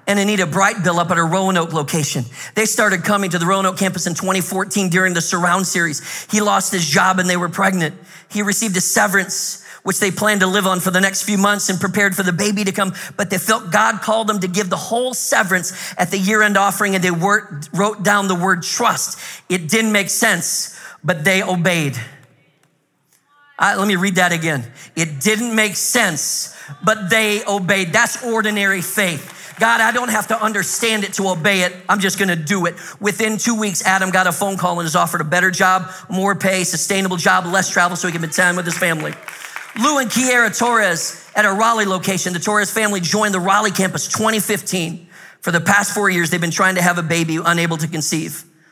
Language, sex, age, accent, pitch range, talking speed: English, male, 40-59, American, 170-205 Hz, 210 wpm